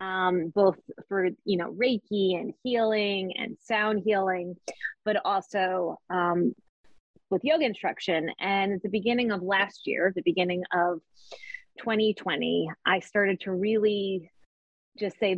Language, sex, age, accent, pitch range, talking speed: English, female, 20-39, American, 180-220 Hz, 135 wpm